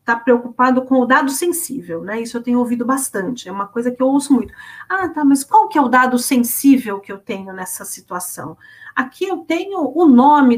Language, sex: Portuguese, female